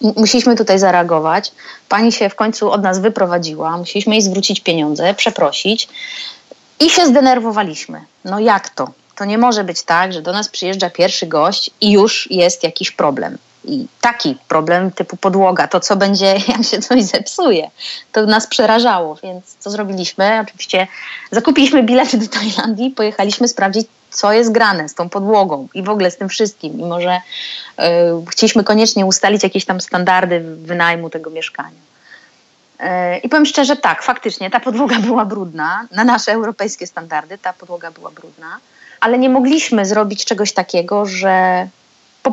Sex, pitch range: female, 185-230 Hz